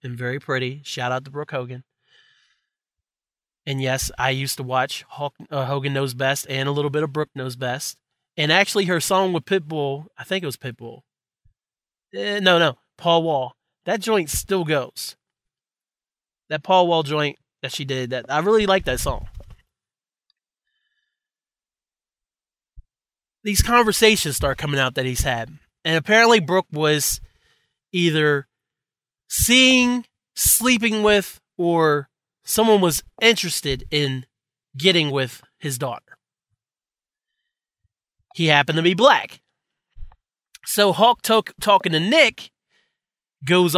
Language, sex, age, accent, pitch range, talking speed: English, male, 30-49, American, 135-190 Hz, 130 wpm